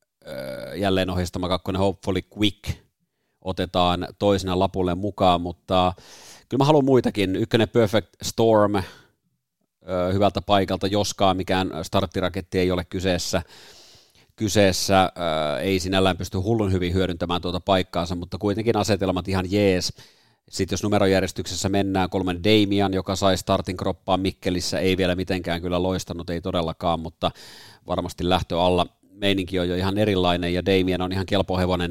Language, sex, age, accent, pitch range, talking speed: Finnish, male, 40-59, native, 90-100 Hz, 135 wpm